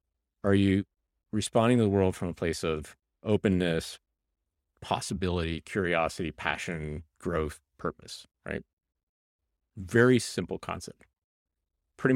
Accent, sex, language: American, male, English